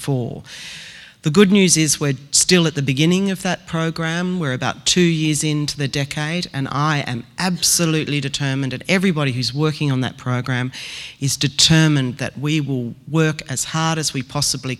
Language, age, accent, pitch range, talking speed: English, 40-59, Australian, 130-155 Hz, 170 wpm